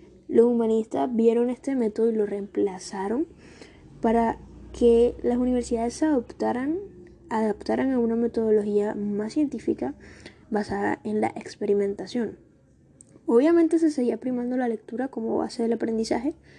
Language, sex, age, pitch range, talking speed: Spanish, female, 10-29, 215-255 Hz, 120 wpm